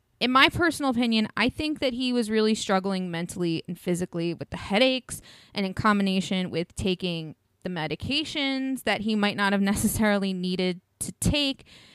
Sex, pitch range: female, 190-245 Hz